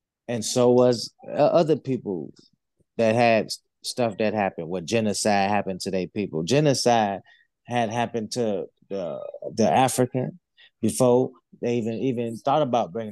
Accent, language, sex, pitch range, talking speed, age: American, English, male, 110-135 Hz, 135 wpm, 20-39